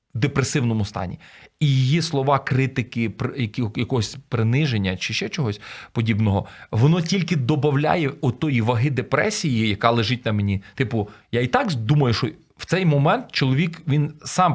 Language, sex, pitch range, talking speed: Ukrainian, male, 115-165 Hz, 140 wpm